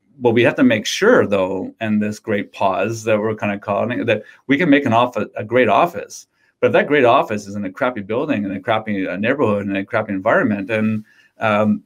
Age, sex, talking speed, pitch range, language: 30-49, male, 230 wpm, 105-115 Hz, English